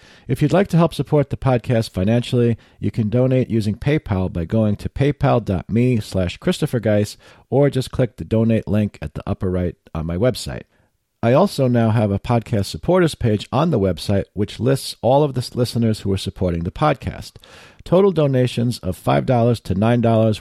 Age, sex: 50-69, male